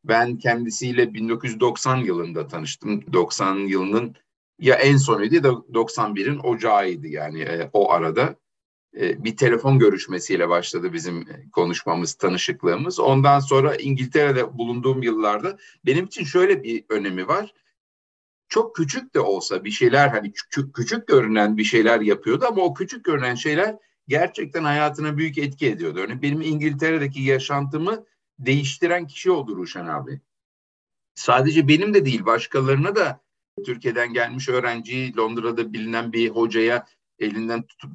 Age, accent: 50-69, native